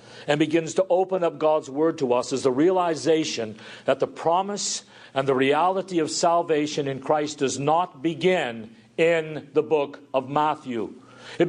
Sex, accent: male, American